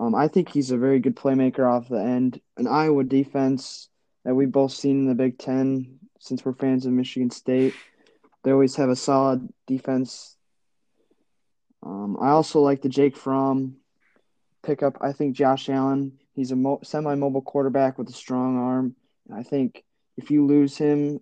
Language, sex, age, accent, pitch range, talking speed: English, male, 20-39, American, 130-135 Hz, 170 wpm